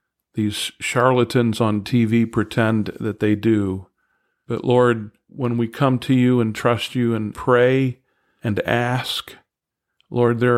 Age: 50-69